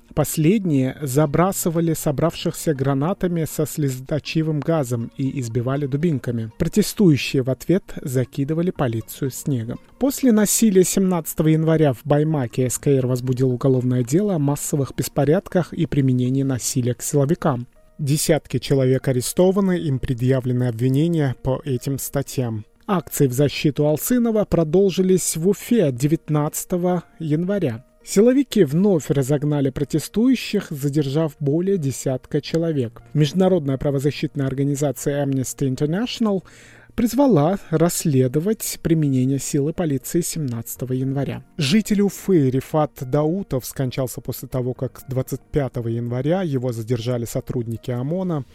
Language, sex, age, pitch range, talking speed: Russian, male, 30-49, 130-165 Hz, 105 wpm